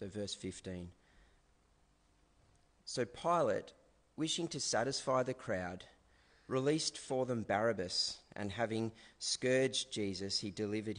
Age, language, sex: 40-59, English, male